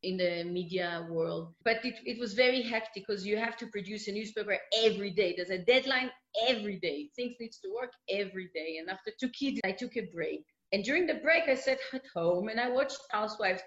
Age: 30-49